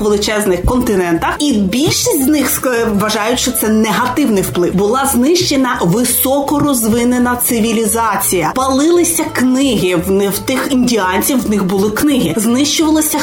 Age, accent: 20-39, native